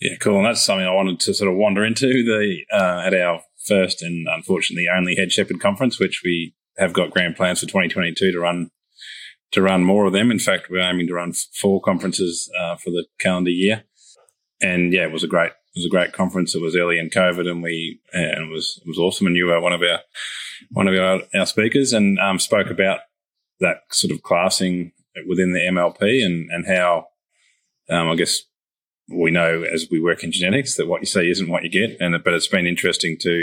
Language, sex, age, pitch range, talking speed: English, male, 20-39, 85-95 Hz, 225 wpm